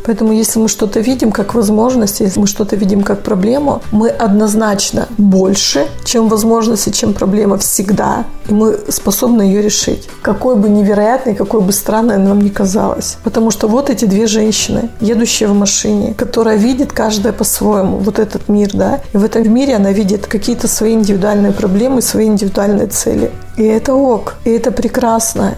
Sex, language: female, Russian